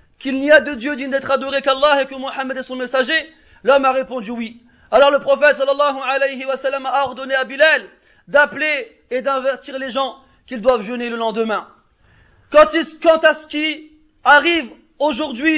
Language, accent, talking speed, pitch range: French, French, 170 wpm, 275-310 Hz